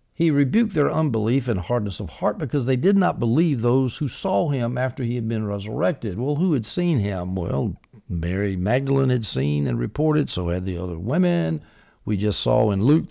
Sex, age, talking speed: male, 60-79, 200 wpm